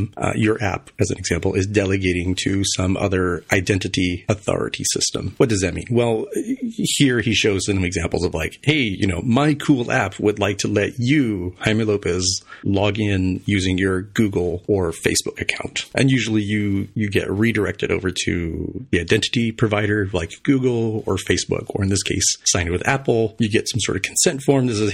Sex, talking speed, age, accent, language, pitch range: male, 190 wpm, 30-49, American, English, 95-115 Hz